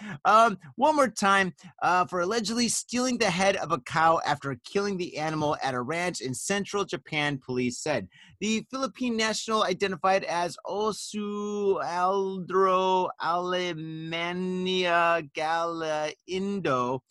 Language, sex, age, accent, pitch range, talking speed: English, male, 30-49, American, 150-200 Hz, 110 wpm